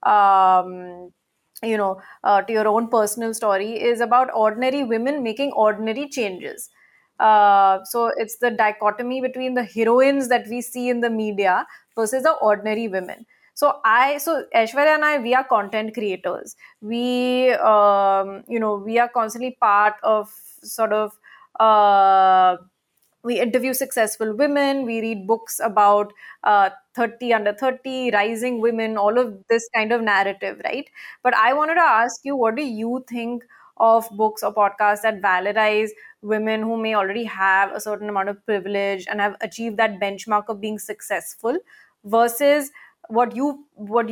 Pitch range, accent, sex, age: 210-250 Hz, Indian, female, 30-49